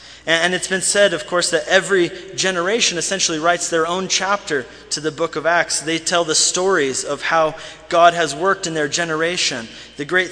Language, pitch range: English, 150-180 Hz